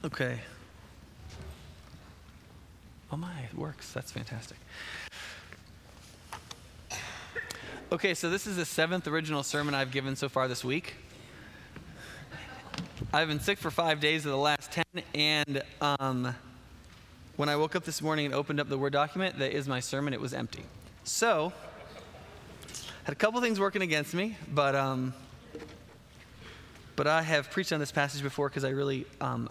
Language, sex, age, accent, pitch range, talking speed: English, male, 20-39, American, 110-150 Hz, 155 wpm